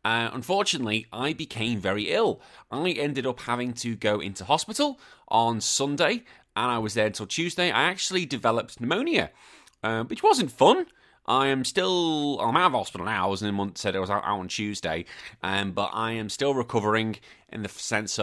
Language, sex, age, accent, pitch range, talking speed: English, male, 30-49, British, 90-115 Hz, 190 wpm